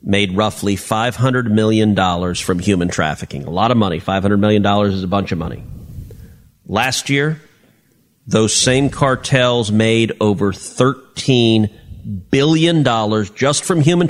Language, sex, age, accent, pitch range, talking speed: English, male, 40-59, American, 105-140 Hz, 130 wpm